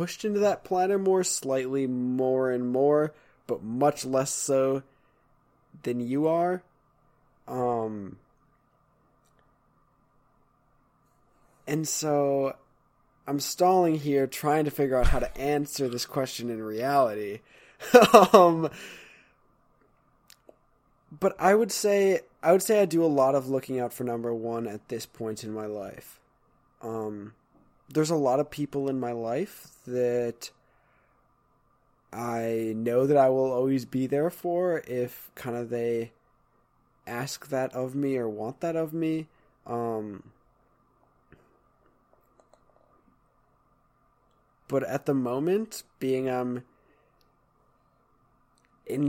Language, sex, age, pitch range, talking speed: English, male, 20-39, 120-155 Hz, 120 wpm